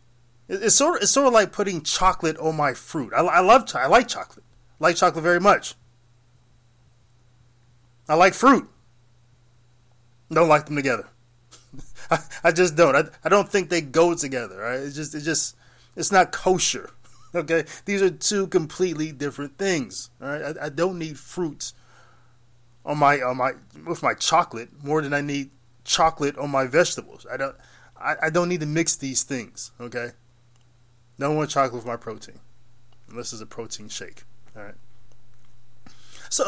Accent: American